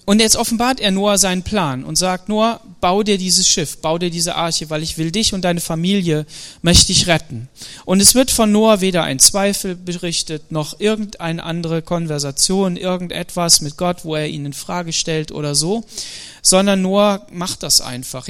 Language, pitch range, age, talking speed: German, 155-190 Hz, 40-59, 185 wpm